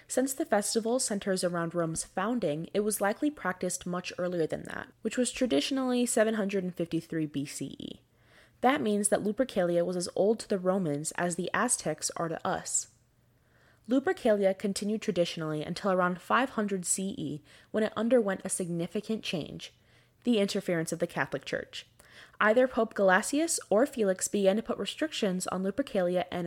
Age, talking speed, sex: 20-39, 150 wpm, female